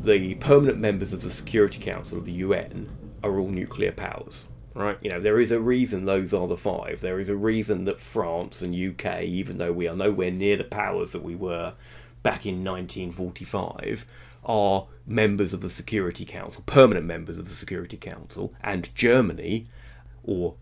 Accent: British